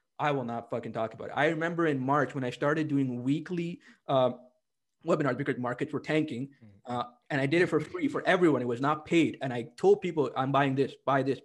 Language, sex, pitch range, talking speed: English, male, 120-150 Hz, 230 wpm